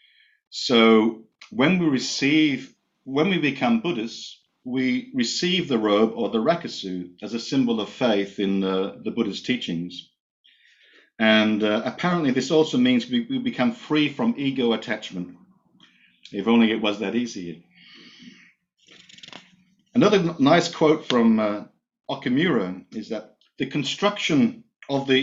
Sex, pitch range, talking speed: male, 105-155 Hz, 135 wpm